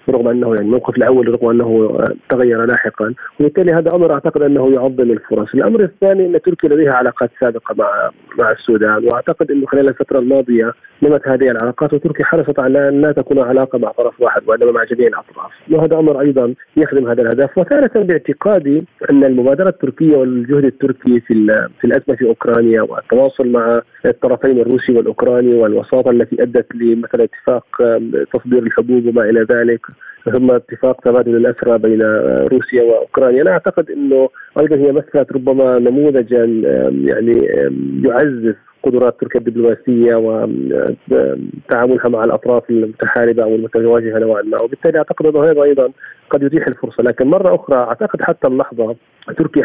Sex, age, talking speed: male, 40-59, 150 wpm